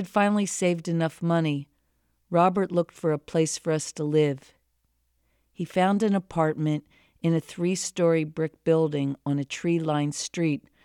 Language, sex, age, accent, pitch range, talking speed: English, female, 50-69, American, 150-170 Hz, 145 wpm